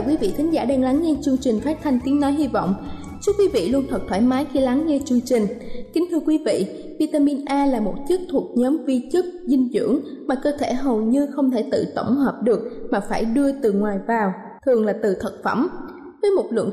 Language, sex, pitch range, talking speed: Vietnamese, female, 230-295 Hz, 240 wpm